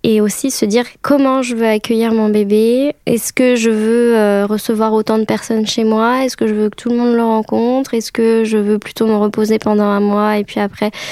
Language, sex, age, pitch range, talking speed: French, female, 10-29, 215-240 Hz, 235 wpm